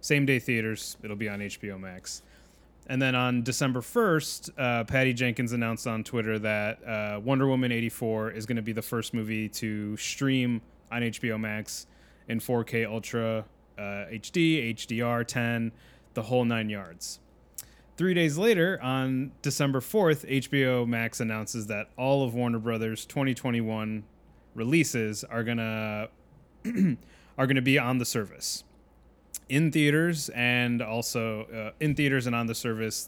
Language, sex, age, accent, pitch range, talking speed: English, male, 20-39, American, 110-135 Hz, 145 wpm